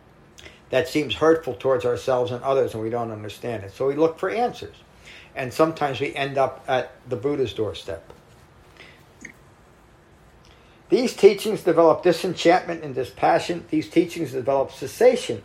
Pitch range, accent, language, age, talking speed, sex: 115-170 Hz, American, English, 50-69, 140 wpm, male